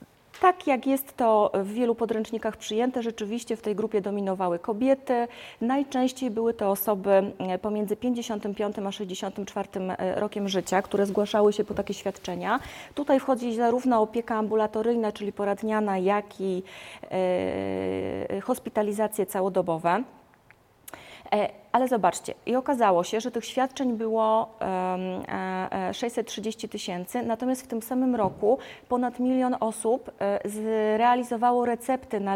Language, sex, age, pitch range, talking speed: Polish, female, 30-49, 195-235 Hz, 115 wpm